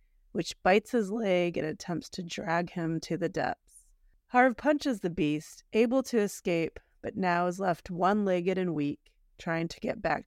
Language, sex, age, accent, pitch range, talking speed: English, female, 30-49, American, 165-210 Hz, 175 wpm